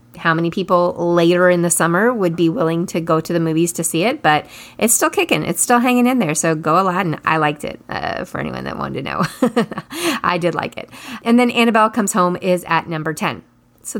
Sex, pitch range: female, 170-215 Hz